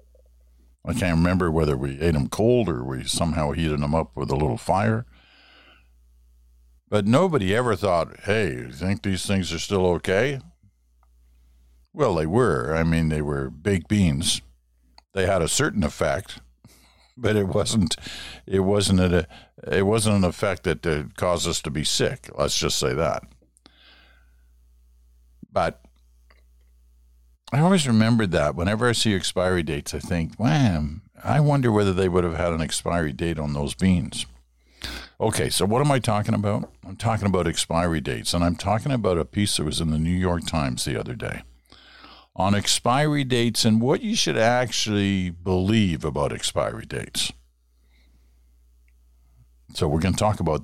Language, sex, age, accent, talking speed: English, male, 60-79, American, 160 wpm